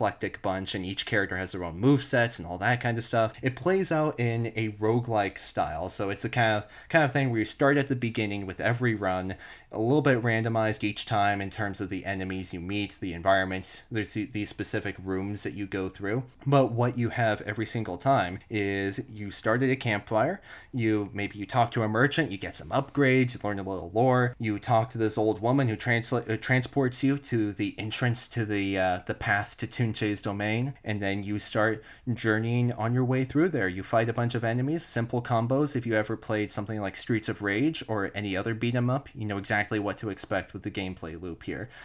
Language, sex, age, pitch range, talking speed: English, male, 20-39, 100-120 Hz, 220 wpm